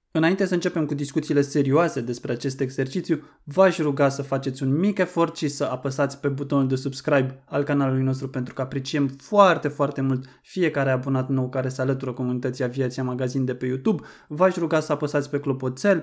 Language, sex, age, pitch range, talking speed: Romanian, male, 20-39, 130-150 Hz, 190 wpm